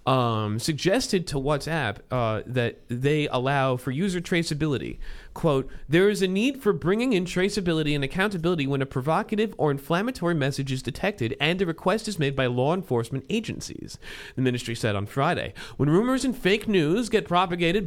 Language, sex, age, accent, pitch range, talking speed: English, male, 40-59, American, 135-195 Hz, 170 wpm